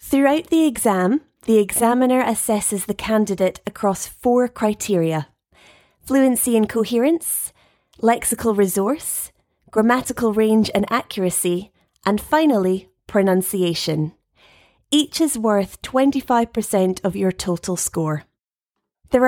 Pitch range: 185-245 Hz